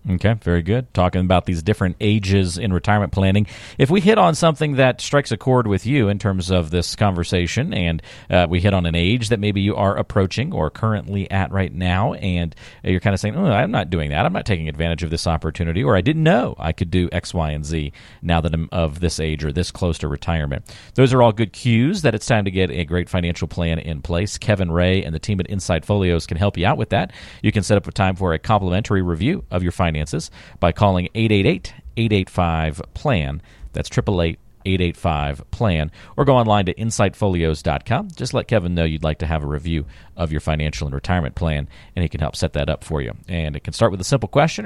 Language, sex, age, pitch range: English, male, 40-59, 85-110 Hz